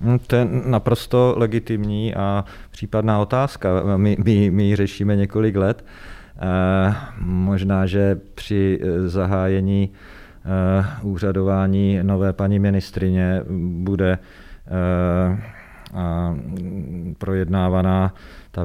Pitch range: 90-100 Hz